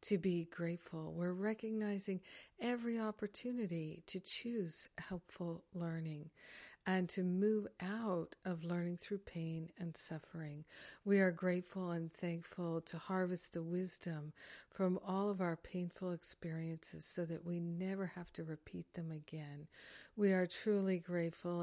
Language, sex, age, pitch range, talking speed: English, female, 50-69, 165-190 Hz, 135 wpm